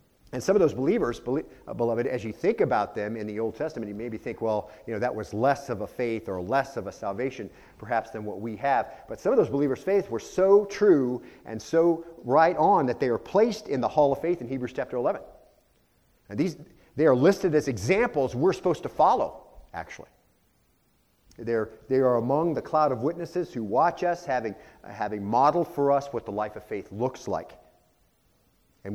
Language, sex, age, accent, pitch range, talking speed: English, male, 40-59, American, 110-135 Hz, 205 wpm